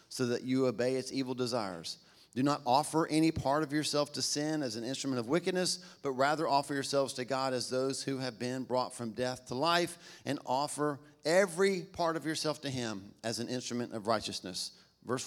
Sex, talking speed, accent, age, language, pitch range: male, 200 wpm, American, 40-59, English, 110-140 Hz